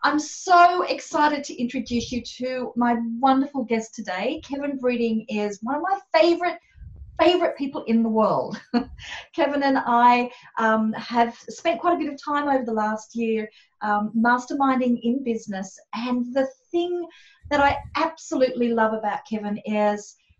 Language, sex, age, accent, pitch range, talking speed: English, female, 40-59, Australian, 225-285 Hz, 155 wpm